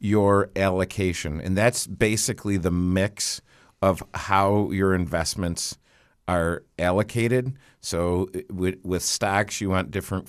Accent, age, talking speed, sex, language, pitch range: American, 50-69, 110 wpm, male, English, 80-95 Hz